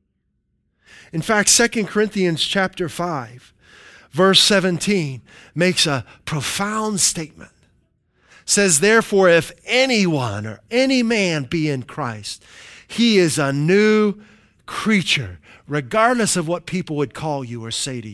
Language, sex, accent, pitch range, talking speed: English, male, American, 140-195 Hz, 125 wpm